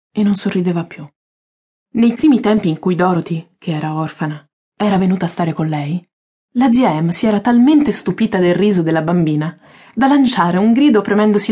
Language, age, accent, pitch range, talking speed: Italian, 20-39, native, 165-220 Hz, 180 wpm